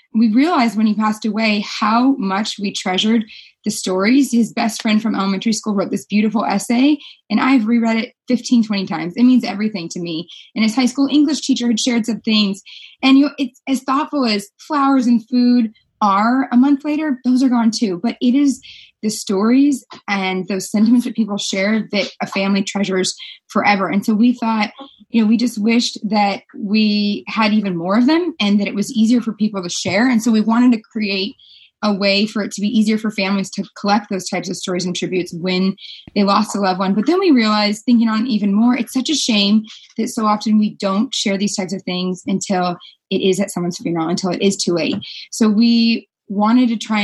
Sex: female